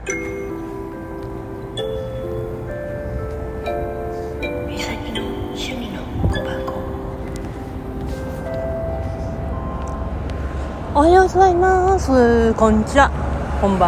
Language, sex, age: Japanese, female, 40-59